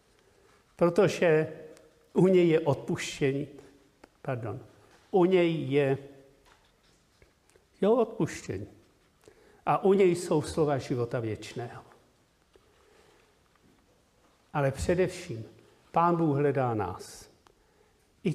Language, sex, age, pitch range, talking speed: Czech, male, 60-79, 135-190 Hz, 80 wpm